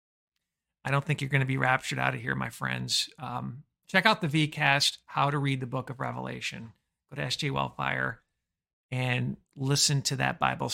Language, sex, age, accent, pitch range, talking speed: English, male, 50-69, American, 110-145 Hz, 190 wpm